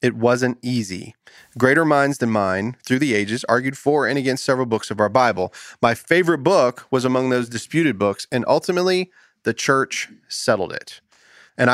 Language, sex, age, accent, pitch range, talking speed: English, male, 30-49, American, 115-150 Hz, 175 wpm